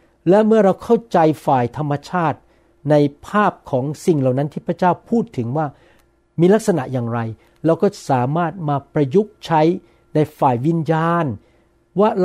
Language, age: Thai, 60-79